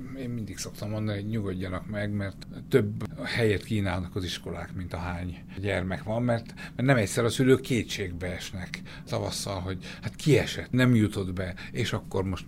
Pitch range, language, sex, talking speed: 95-130 Hz, Hungarian, male, 180 wpm